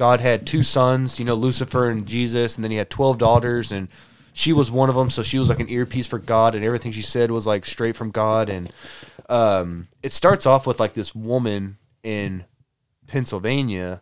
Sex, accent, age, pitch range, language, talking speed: male, American, 20-39, 105-125 Hz, English, 210 wpm